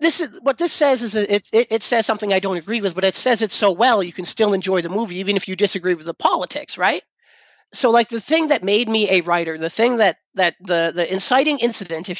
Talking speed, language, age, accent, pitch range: 270 wpm, English, 40-59, American, 180-220 Hz